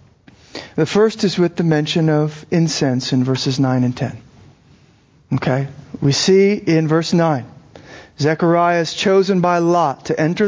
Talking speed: 150 wpm